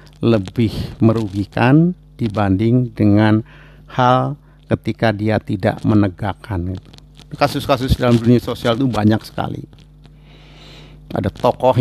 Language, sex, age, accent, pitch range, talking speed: Indonesian, male, 50-69, native, 115-150 Hz, 95 wpm